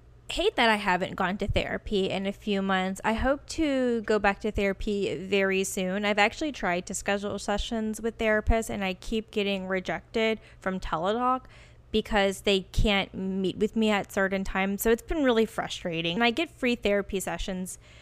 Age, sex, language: 10-29, female, English